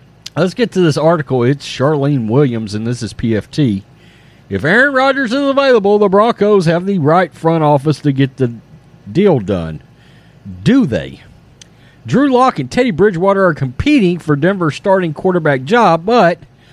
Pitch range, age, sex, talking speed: 140-195 Hz, 40-59, male, 160 wpm